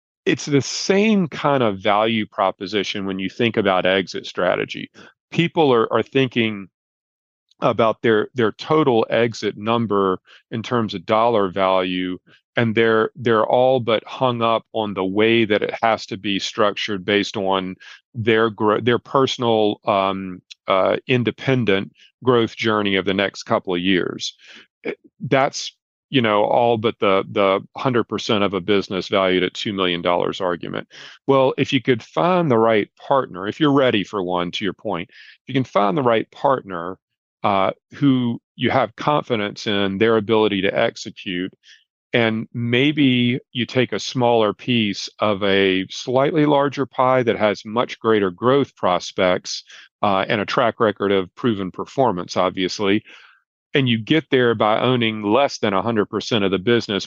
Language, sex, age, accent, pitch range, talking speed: English, male, 40-59, American, 100-120 Hz, 160 wpm